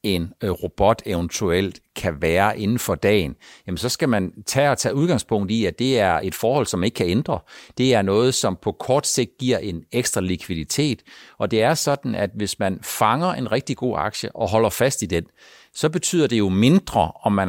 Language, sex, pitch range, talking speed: Danish, male, 100-135 Hz, 210 wpm